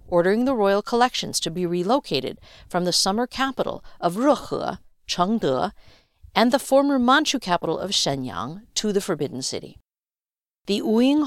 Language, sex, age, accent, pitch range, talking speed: English, female, 50-69, American, 165-245 Hz, 145 wpm